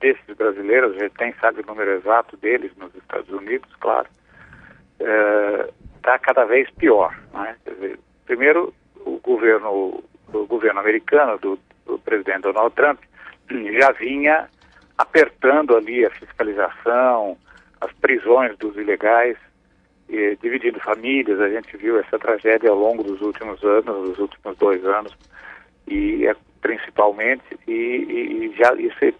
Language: Portuguese